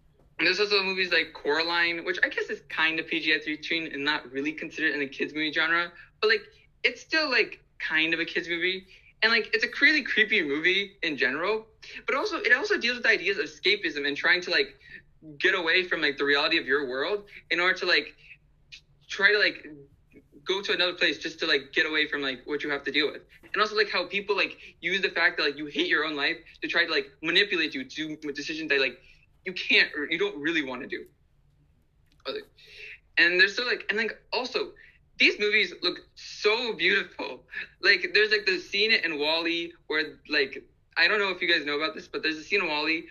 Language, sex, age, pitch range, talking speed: English, male, 20-39, 150-215 Hz, 220 wpm